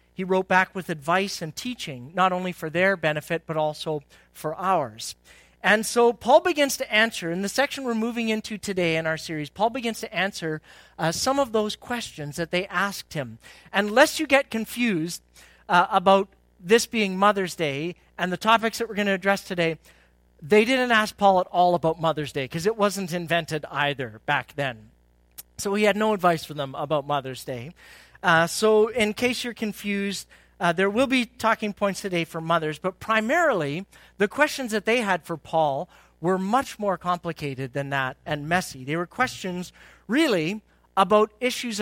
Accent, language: American, English